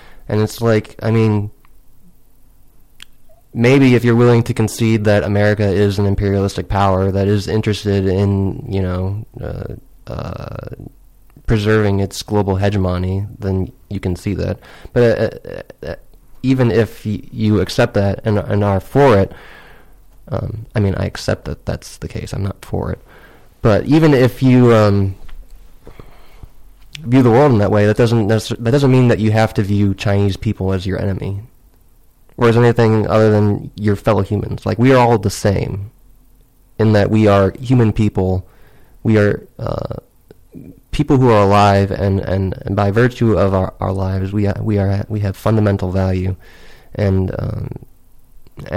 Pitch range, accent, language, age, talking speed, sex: 100-120 Hz, American, English, 20-39, 160 wpm, male